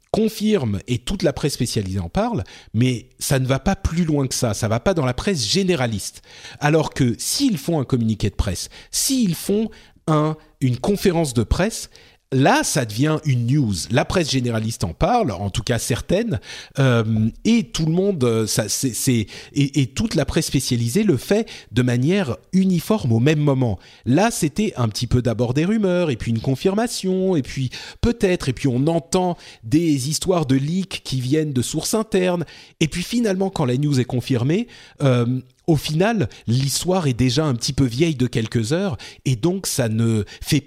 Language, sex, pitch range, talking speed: French, male, 115-165 Hz, 190 wpm